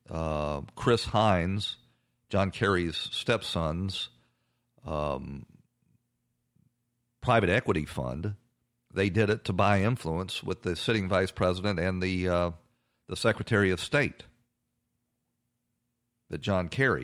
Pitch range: 95-120 Hz